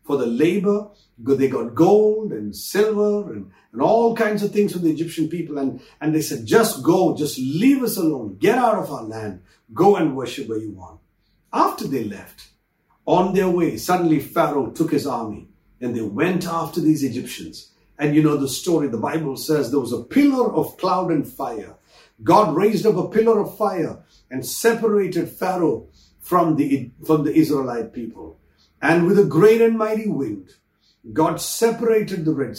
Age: 50-69